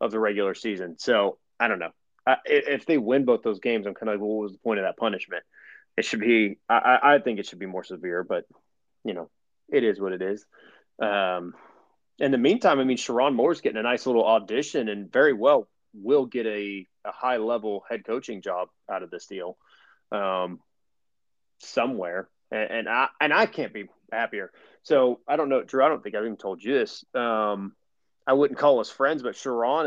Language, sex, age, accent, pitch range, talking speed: English, male, 30-49, American, 105-125 Hz, 210 wpm